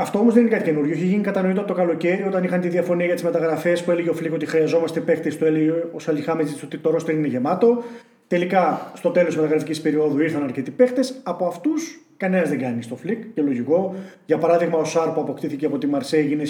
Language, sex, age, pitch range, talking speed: Greek, male, 30-49, 150-200 Hz, 225 wpm